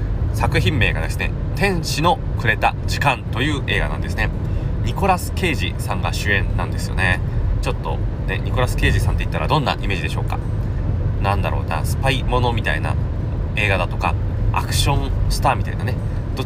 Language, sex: Japanese, male